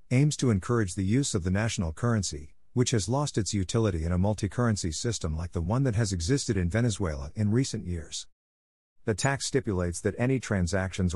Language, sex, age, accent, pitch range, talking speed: English, male, 50-69, American, 90-115 Hz, 190 wpm